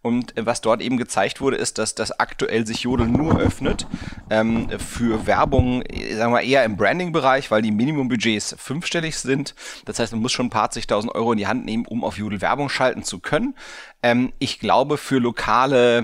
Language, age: German, 30-49